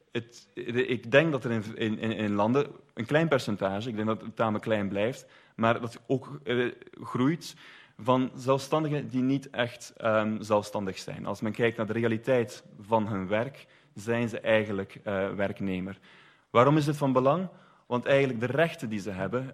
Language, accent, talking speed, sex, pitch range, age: Dutch, Dutch, 180 wpm, male, 105-130 Hz, 30-49